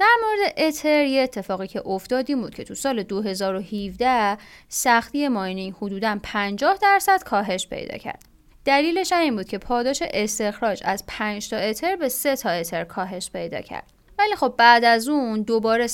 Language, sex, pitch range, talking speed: Persian, female, 200-270 Hz, 165 wpm